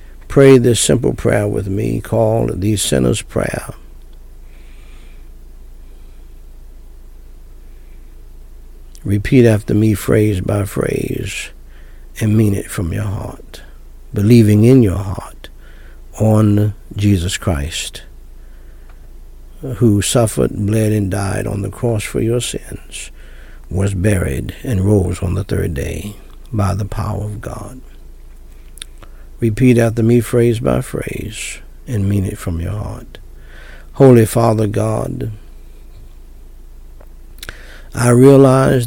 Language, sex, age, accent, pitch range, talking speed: English, male, 60-79, American, 85-115 Hz, 110 wpm